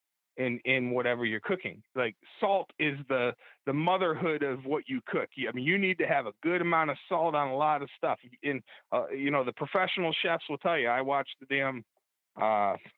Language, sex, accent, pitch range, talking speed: English, male, American, 135-175 Hz, 210 wpm